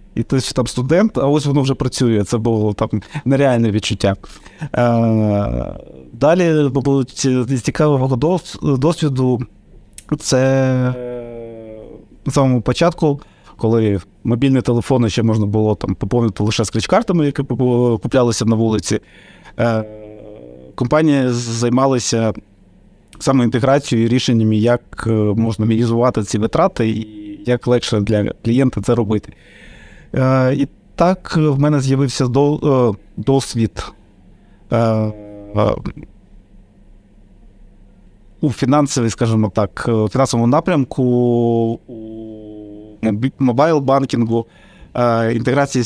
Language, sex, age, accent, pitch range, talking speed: Ukrainian, male, 30-49, native, 110-135 Hz, 90 wpm